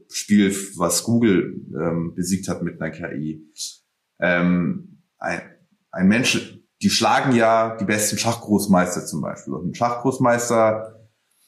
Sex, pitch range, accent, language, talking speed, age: male, 100-135 Hz, German, German, 125 wpm, 30-49